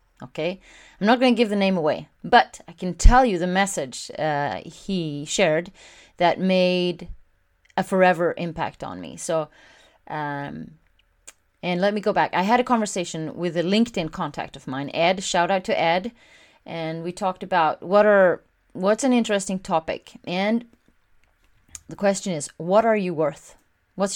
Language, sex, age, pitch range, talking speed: English, female, 30-49, 160-200 Hz, 165 wpm